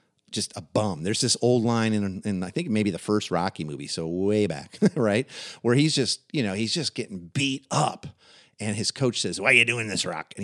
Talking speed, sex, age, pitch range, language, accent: 235 wpm, male, 50-69, 95-130 Hz, English, American